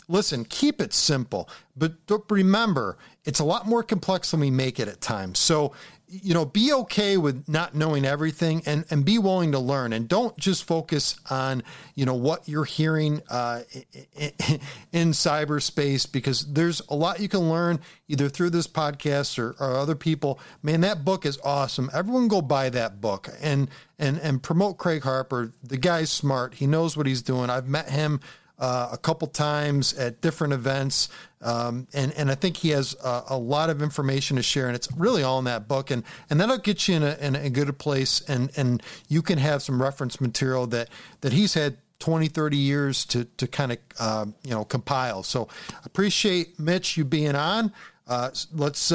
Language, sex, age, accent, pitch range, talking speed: English, male, 40-59, American, 135-165 Hz, 195 wpm